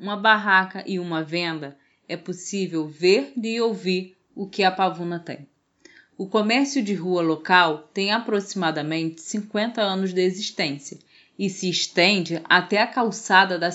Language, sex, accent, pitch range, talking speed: Portuguese, female, Brazilian, 170-205 Hz, 145 wpm